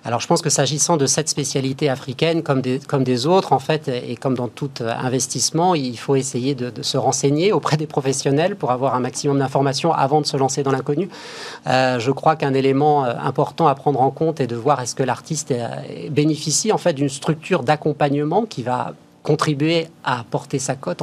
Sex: male